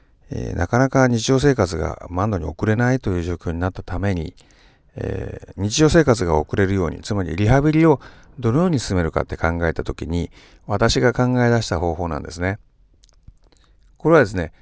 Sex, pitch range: male, 85-130 Hz